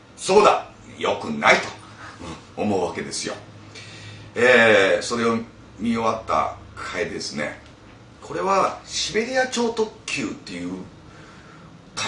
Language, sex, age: Japanese, male, 40-59